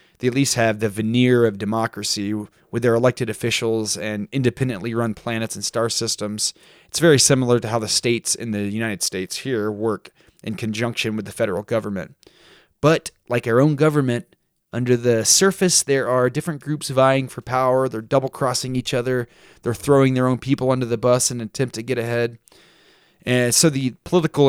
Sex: male